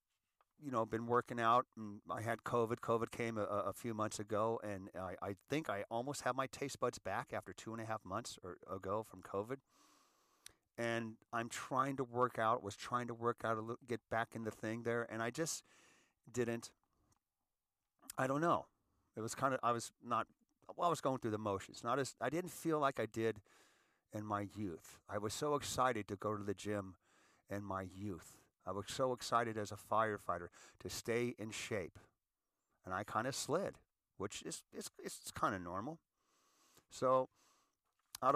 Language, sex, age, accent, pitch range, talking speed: English, male, 40-59, American, 105-130 Hz, 195 wpm